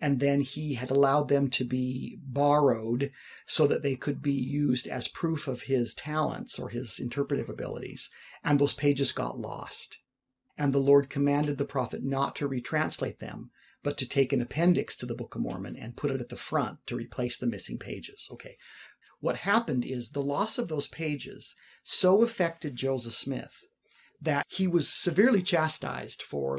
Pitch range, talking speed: 130-165 Hz, 180 wpm